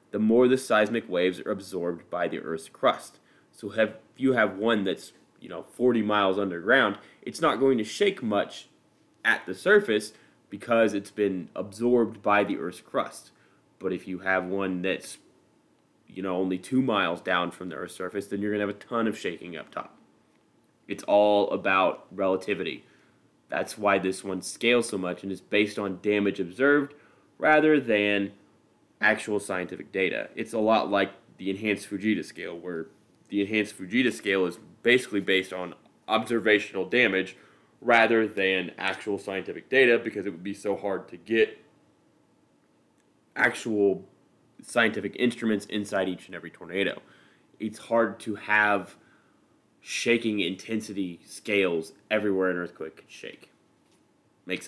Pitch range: 95-115 Hz